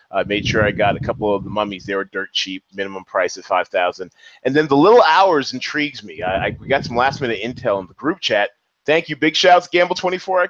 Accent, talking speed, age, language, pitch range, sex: American, 265 wpm, 30-49, English, 105-155 Hz, male